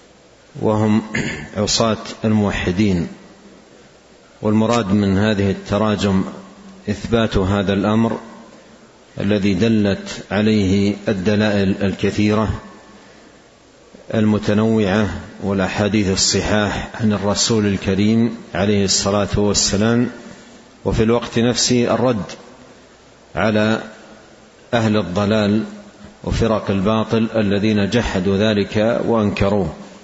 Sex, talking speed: male, 75 wpm